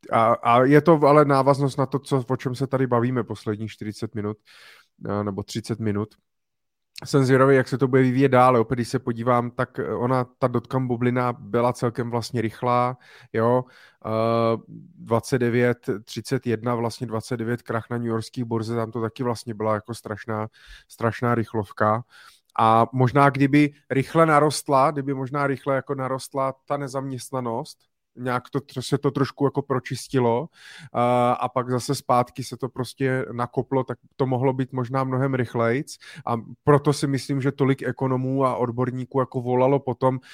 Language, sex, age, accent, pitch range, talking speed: Czech, male, 30-49, native, 120-135 Hz, 160 wpm